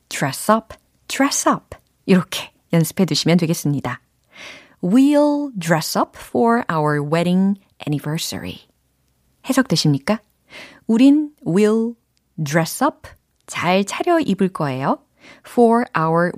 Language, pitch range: Korean, 155-230 Hz